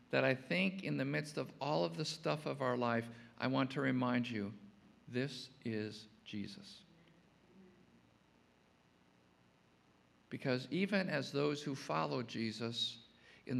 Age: 50-69